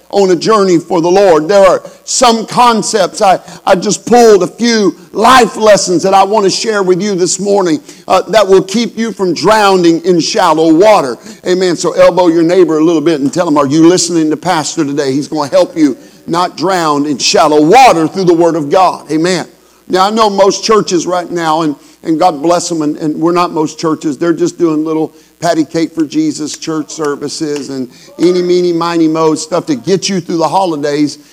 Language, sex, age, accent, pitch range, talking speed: English, male, 50-69, American, 165-205 Hz, 210 wpm